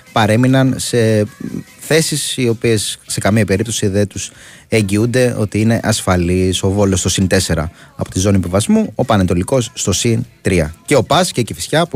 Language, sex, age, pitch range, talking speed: Greek, male, 30-49, 95-125 Hz, 175 wpm